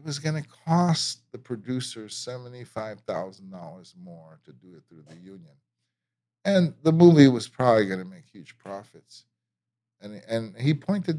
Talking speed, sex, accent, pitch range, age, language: 155 wpm, male, American, 95-135 Hz, 50-69, English